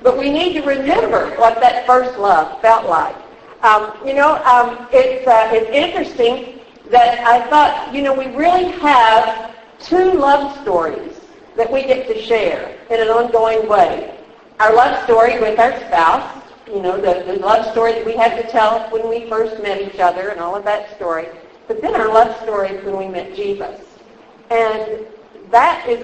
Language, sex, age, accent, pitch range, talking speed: English, female, 50-69, American, 220-285 Hz, 180 wpm